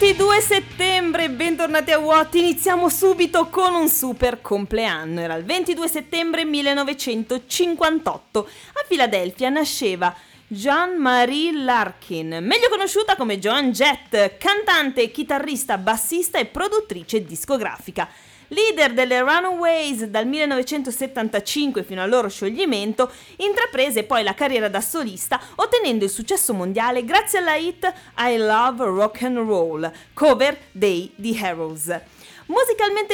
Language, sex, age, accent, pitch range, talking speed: Italian, female, 30-49, native, 210-335 Hz, 110 wpm